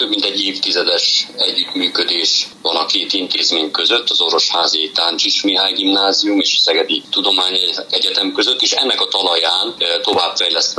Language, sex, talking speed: Hungarian, male, 140 wpm